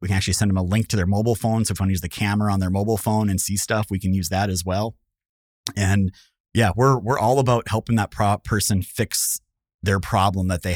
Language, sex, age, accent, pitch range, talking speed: English, male, 30-49, American, 95-115 Hz, 260 wpm